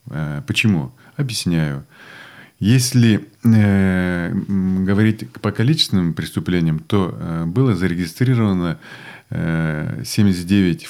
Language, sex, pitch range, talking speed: Russian, male, 90-120 Hz, 75 wpm